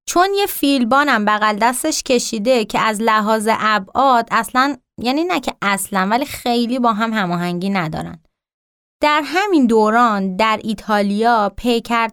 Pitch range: 195-250 Hz